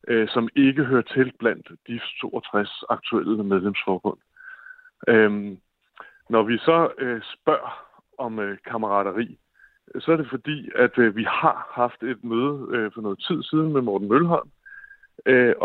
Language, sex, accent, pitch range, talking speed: Danish, male, native, 105-140 Hz, 145 wpm